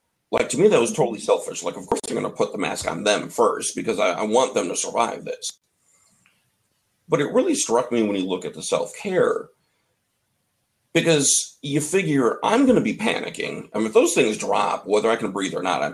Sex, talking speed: male, 220 wpm